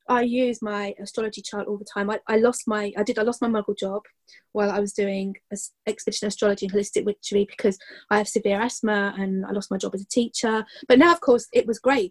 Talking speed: 240 wpm